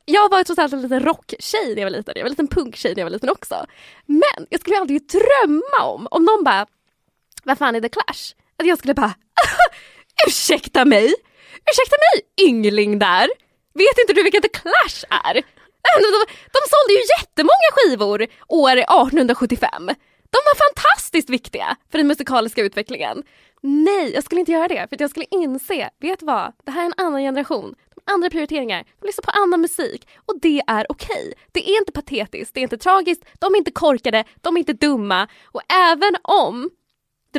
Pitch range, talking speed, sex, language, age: 260-380 Hz, 195 wpm, female, English, 10-29